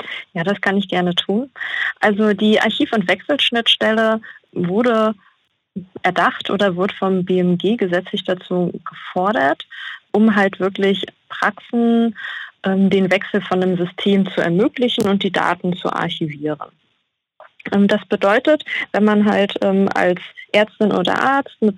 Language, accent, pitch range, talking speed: German, German, 185-220 Hz, 135 wpm